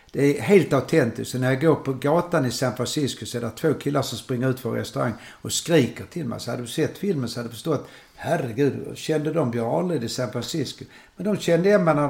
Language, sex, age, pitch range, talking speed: Swedish, male, 60-79, 120-150 Hz, 240 wpm